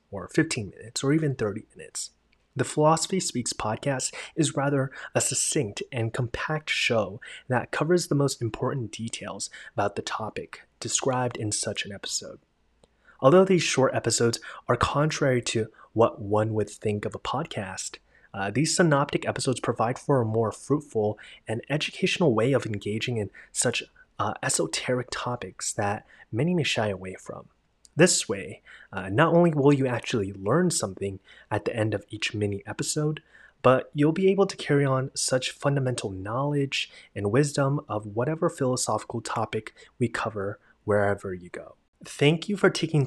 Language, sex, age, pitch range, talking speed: English, male, 30-49, 110-145 Hz, 155 wpm